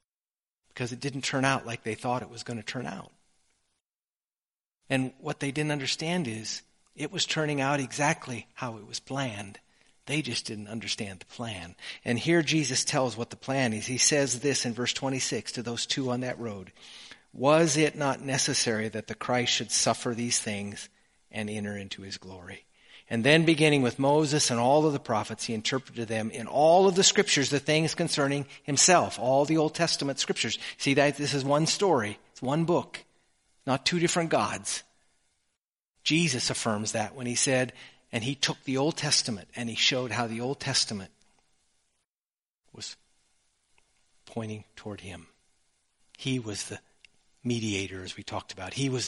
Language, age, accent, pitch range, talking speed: English, 50-69, American, 105-140 Hz, 175 wpm